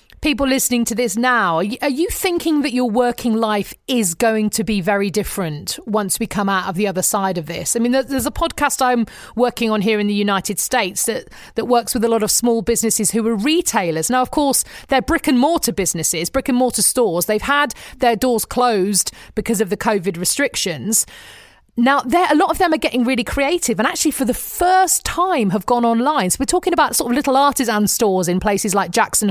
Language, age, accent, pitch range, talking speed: English, 40-59, British, 205-265 Hz, 215 wpm